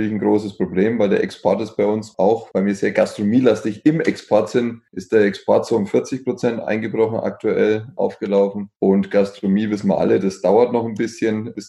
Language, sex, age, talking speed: German, male, 20-39, 195 wpm